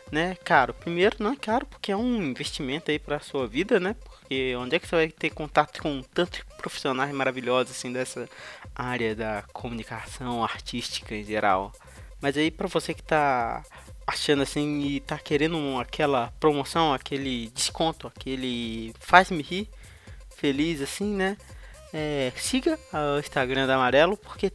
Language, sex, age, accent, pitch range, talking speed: Portuguese, male, 20-39, Brazilian, 130-160 Hz, 155 wpm